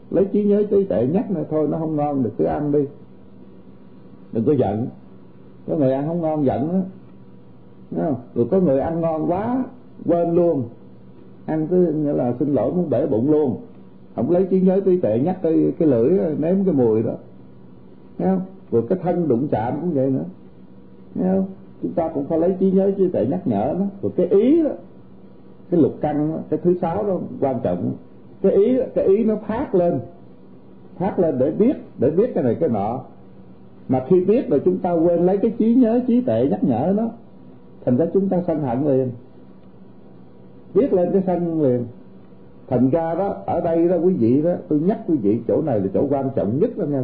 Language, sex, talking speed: Vietnamese, male, 205 wpm